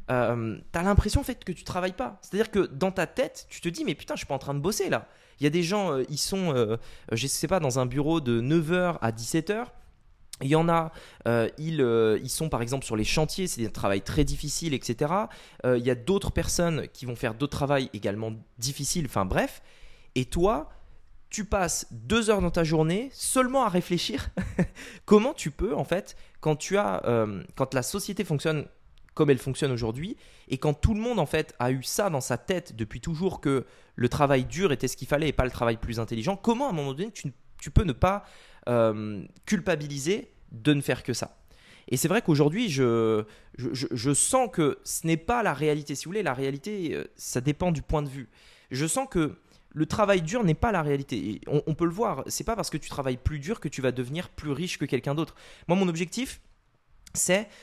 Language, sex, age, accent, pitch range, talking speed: French, male, 20-39, French, 130-180 Hz, 230 wpm